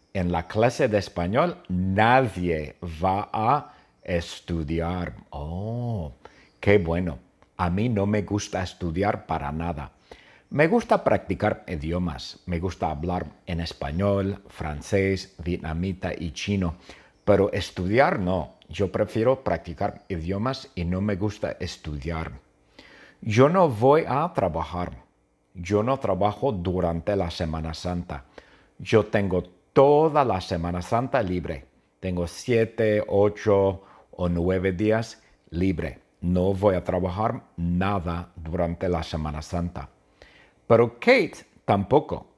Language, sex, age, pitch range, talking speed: English, male, 50-69, 85-105 Hz, 120 wpm